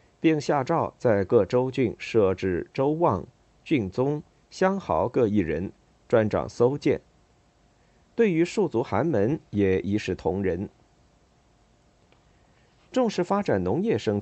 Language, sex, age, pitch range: Chinese, male, 50-69, 100-145 Hz